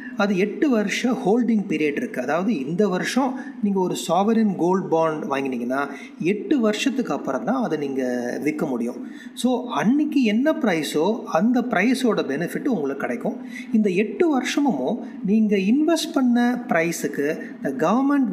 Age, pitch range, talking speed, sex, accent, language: 30-49, 170-250 Hz, 135 wpm, male, native, Tamil